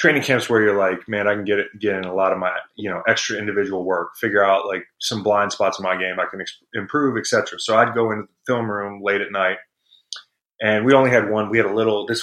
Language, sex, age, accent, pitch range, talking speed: English, male, 30-49, American, 95-110 Hz, 270 wpm